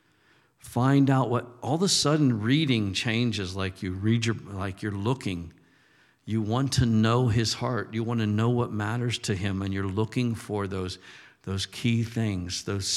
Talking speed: 180 wpm